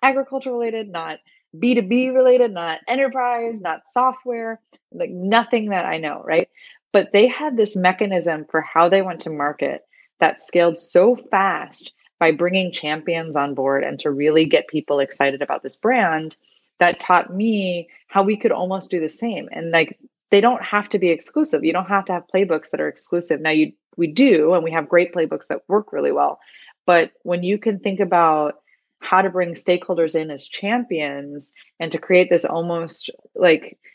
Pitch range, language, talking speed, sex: 155-200 Hz, English, 180 wpm, female